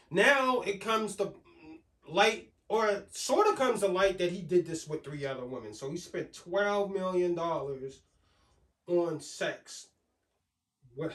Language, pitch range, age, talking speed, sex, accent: English, 155-230 Hz, 20-39, 150 wpm, male, American